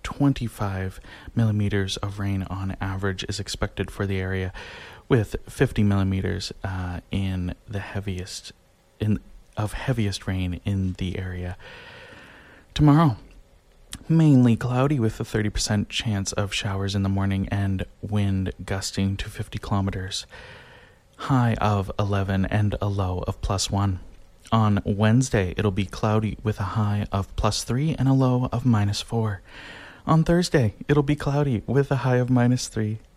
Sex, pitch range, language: male, 95-110 Hz, English